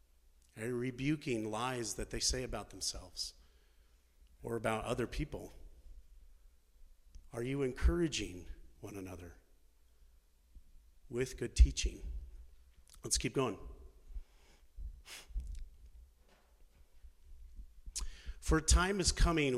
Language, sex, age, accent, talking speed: English, male, 40-59, American, 90 wpm